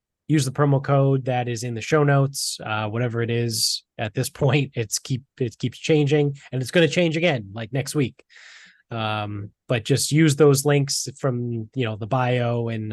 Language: English